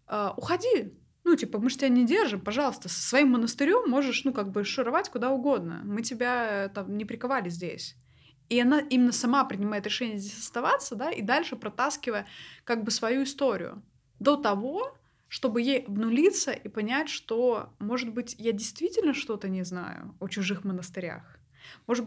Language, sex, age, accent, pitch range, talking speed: Russian, female, 20-39, native, 210-270 Hz, 165 wpm